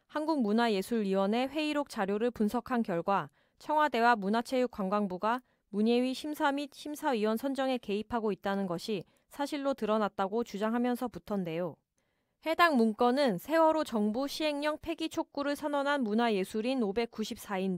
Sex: female